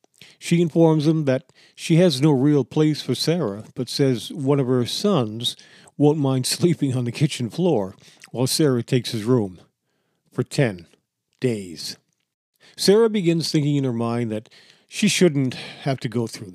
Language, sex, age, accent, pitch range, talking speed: English, male, 50-69, American, 125-165 Hz, 165 wpm